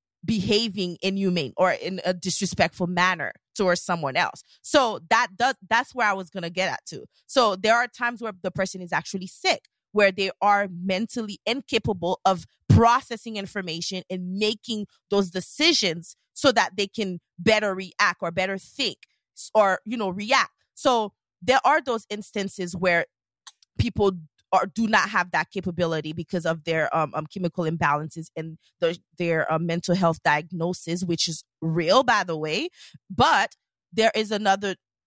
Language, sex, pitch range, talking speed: English, female, 175-225 Hz, 160 wpm